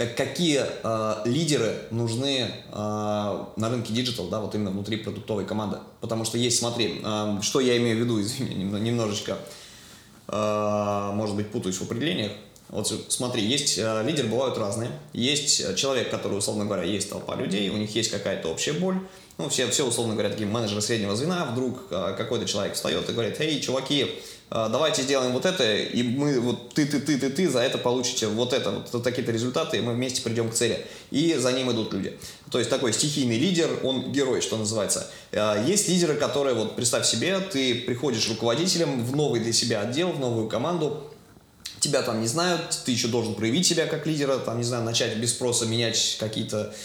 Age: 20-39